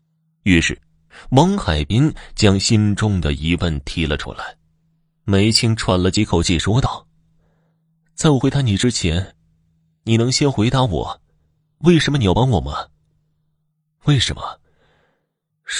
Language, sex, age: Chinese, male, 30-49